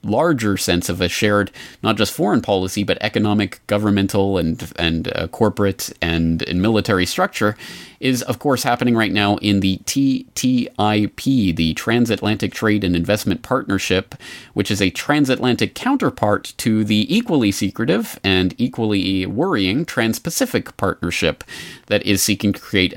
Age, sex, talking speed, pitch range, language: 30-49, male, 140 wpm, 95-120 Hz, English